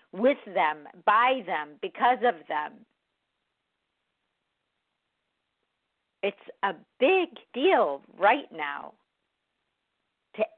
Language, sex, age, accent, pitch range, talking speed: English, female, 50-69, American, 190-235 Hz, 80 wpm